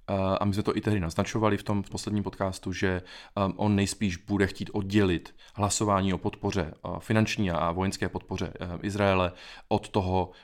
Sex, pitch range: male, 95-110 Hz